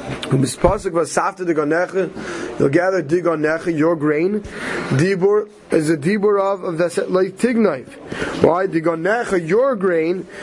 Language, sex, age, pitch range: English, male, 30-49, 165-205 Hz